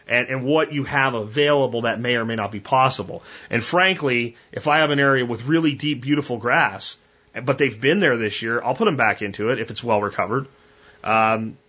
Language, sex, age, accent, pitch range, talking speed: English, male, 30-49, American, 120-145 Hz, 215 wpm